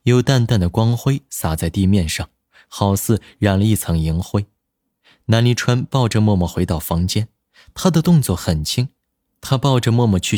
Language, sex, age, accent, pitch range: Chinese, male, 20-39, native, 95-130 Hz